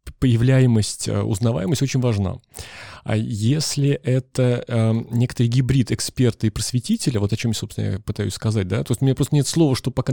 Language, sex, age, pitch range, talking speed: Russian, male, 20-39, 110-135 Hz, 185 wpm